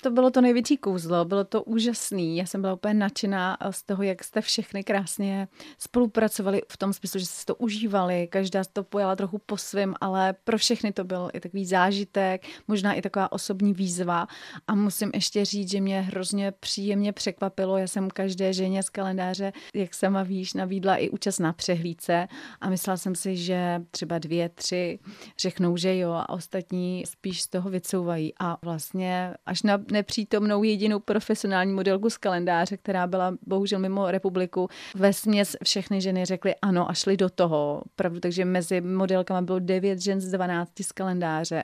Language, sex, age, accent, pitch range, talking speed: Czech, female, 30-49, native, 180-200 Hz, 175 wpm